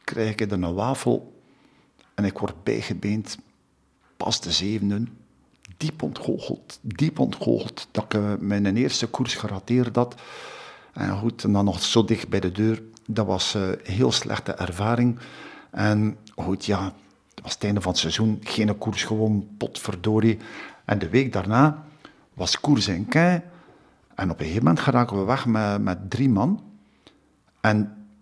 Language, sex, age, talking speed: Dutch, male, 50-69, 160 wpm